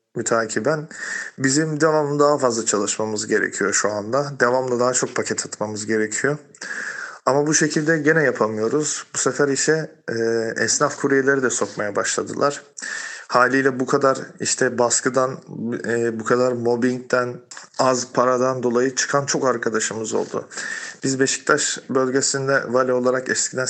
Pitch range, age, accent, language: 120-145 Hz, 40-59, native, Turkish